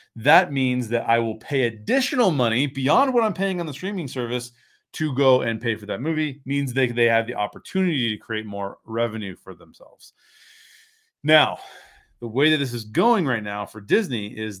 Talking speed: 195 wpm